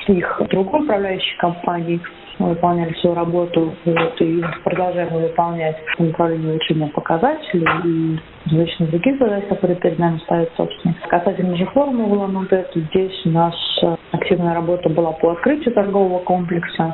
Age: 30-49